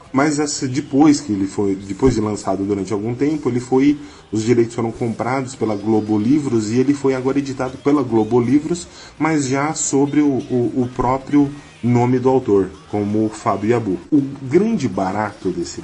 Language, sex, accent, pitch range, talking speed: Portuguese, male, Brazilian, 110-145 Hz, 175 wpm